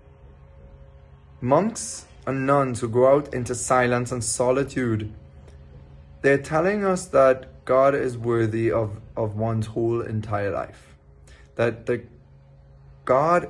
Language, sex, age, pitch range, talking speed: English, male, 20-39, 110-130 Hz, 115 wpm